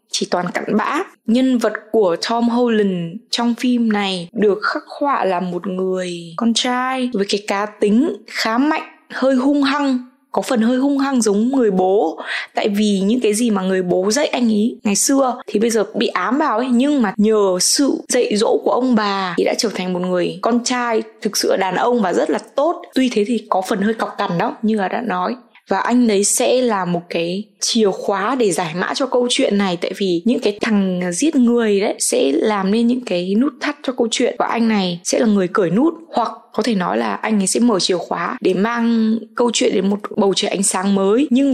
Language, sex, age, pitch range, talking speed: Vietnamese, female, 20-39, 200-255 Hz, 230 wpm